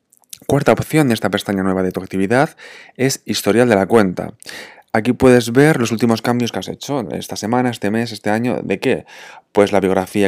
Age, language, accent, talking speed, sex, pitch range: 20-39, Spanish, Spanish, 200 wpm, male, 100-120 Hz